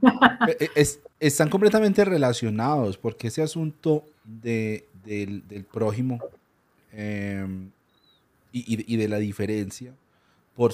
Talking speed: 100 wpm